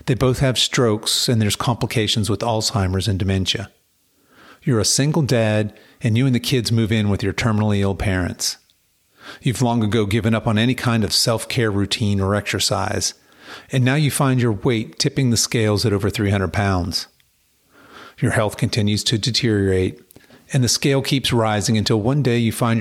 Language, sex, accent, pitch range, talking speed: English, male, American, 100-125 Hz, 180 wpm